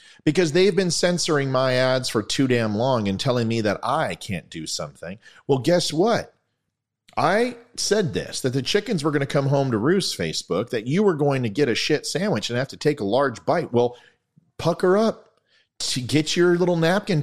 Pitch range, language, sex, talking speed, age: 105-155 Hz, English, male, 200 wpm, 40-59